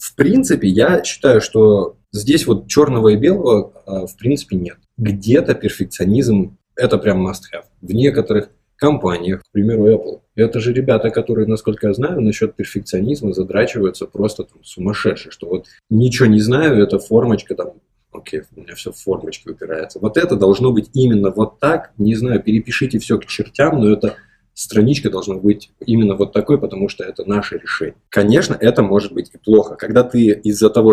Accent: native